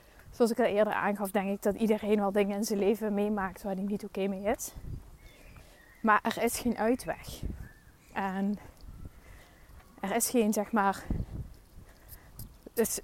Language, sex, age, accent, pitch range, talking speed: Dutch, female, 20-39, Dutch, 195-220 Hz, 155 wpm